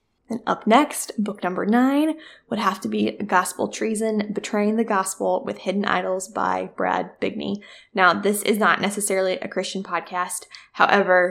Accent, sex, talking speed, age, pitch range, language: American, female, 160 wpm, 10-29, 190-225 Hz, English